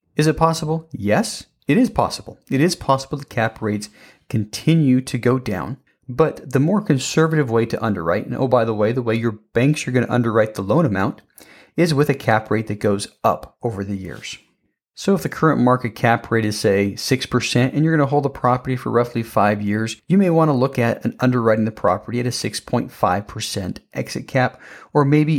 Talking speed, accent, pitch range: 210 wpm, American, 110-145 Hz